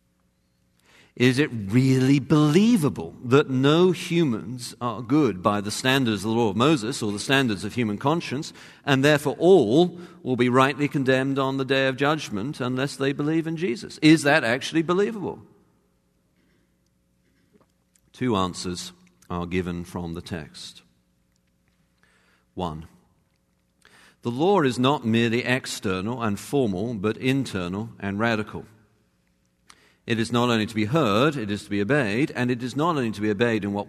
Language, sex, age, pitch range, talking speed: English, male, 50-69, 85-135 Hz, 150 wpm